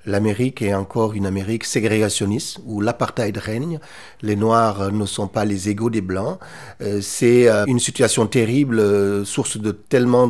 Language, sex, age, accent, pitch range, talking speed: French, male, 40-59, French, 110-145 Hz, 170 wpm